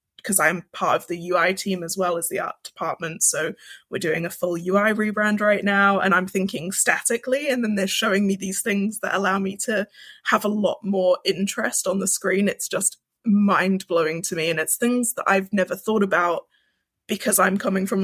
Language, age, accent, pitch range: English, 20-39, British, 190-235 Hz